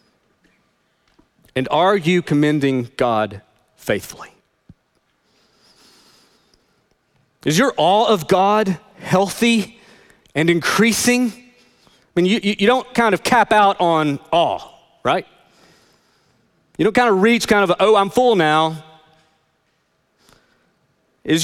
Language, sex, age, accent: English, male, 40-59, American